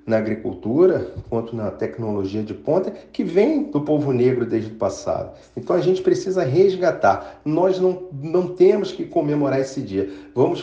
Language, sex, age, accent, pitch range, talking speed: Portuguese, male, 40-59, Brazilian, 130-185 Hz, 165 wpm